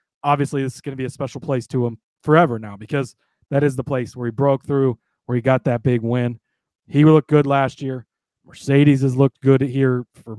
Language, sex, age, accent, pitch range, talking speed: English, male, 30-49, American, 125-150 Hz, 225 wpm